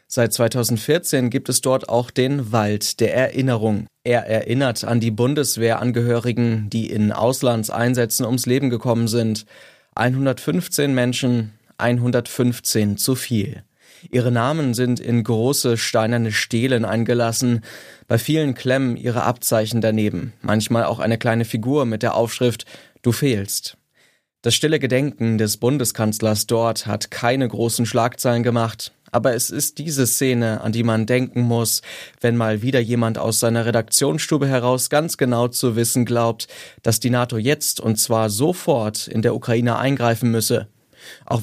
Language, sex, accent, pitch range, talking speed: German, male, German, 115-130 Hz, 140 wpm